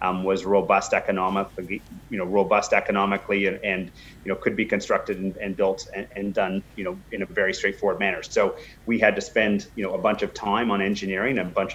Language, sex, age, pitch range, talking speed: English, male, 30-49, 95-110 Hz, 220 wpm